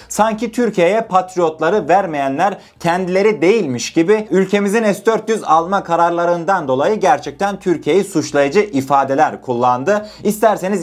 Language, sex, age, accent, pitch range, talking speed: Turkish, male, 30-49, native, 145-210 Hz, 100 wpm